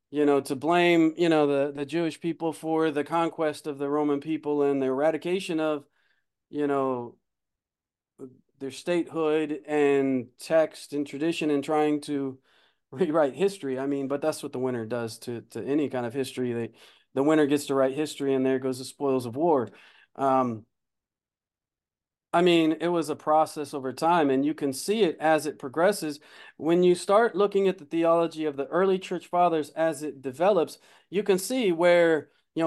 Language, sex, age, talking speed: English, male, 40-59, 180 wpm